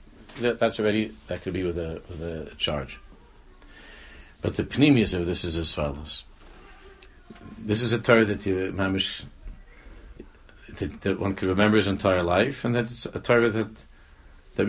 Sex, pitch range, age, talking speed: male, 85-115 Hz, 60-79, 170 wpm